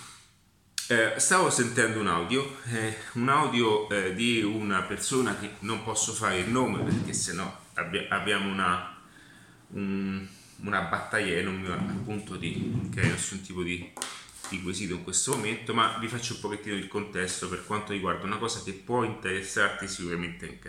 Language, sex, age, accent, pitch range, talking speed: Italian, male, 30-49, native, 90-110 Hz, 170 wpm